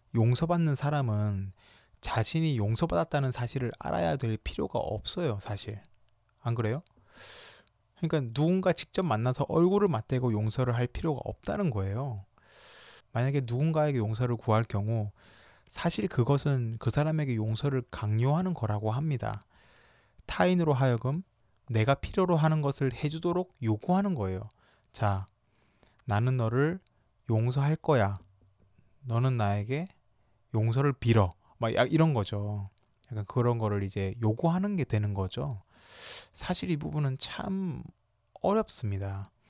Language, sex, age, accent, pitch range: Korean, male, 20-39, native, 110-145 Hz